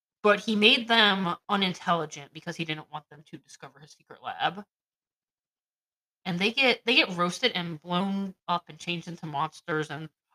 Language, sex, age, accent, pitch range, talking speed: English, female, 30-49, American, 155-190 Hz, 170 wpm